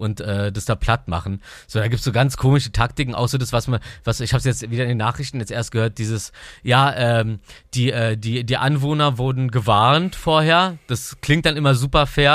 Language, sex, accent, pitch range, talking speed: German, male, German, 110-130 Hz, 225 wpm